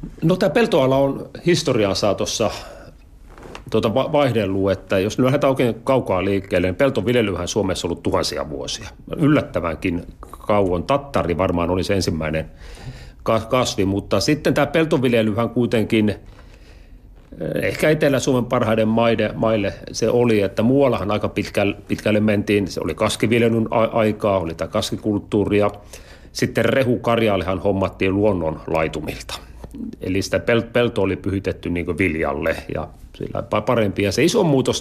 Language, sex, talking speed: Finnish, male, 125 wpm